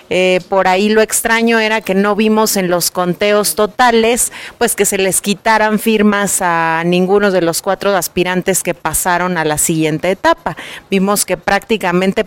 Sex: female